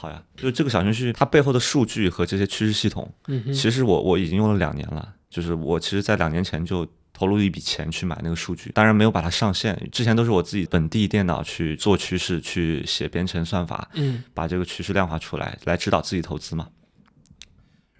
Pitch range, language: 90-110 Hz, Chinese